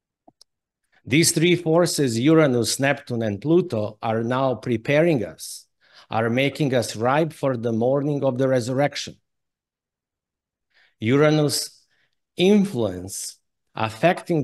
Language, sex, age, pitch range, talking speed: English, male, 50-69, 120-155 Hz, 100 wpm